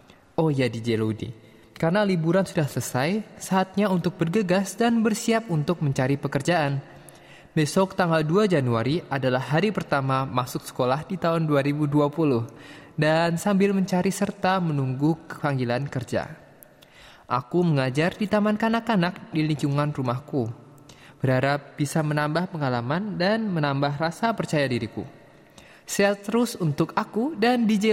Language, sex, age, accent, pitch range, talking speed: Indonesian, male, 20-39, native, 145-205 Hz, 125 wpm